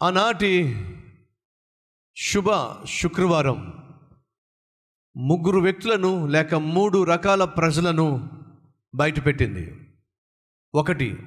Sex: male